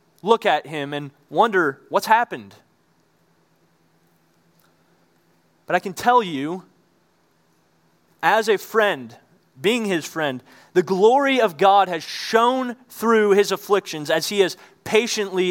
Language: English